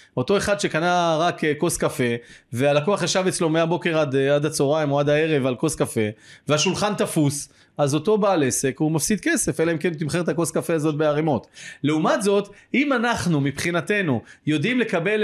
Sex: male